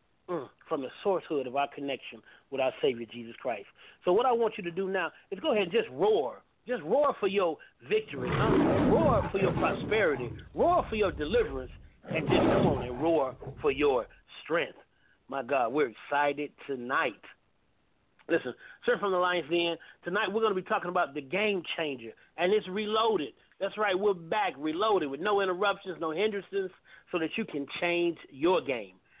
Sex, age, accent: male, 40-59, American